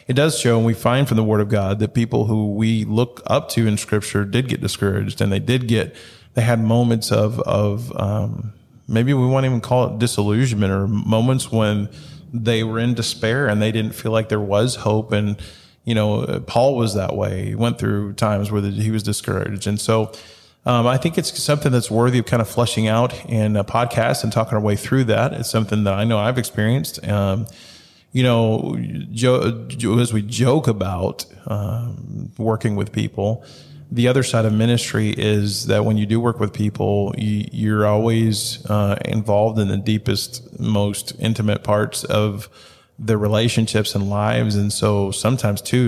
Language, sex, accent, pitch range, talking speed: English, male, American, 105-120 Hz, 190 wpm